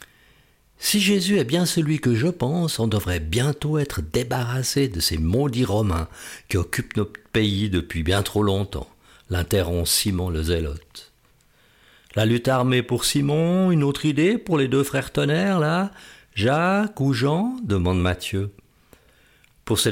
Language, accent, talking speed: French, French, 150 wpm